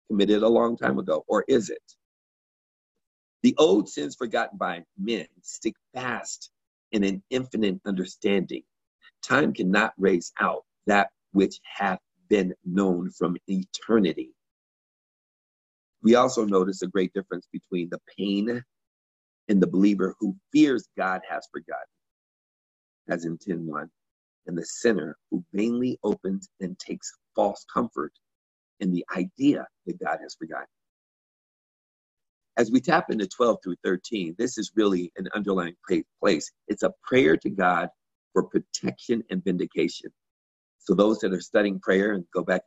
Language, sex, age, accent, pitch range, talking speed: English, male, 50-69, American, 90-110 Hz, 140 wpm